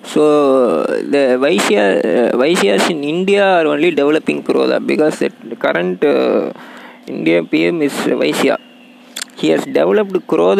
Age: 20-39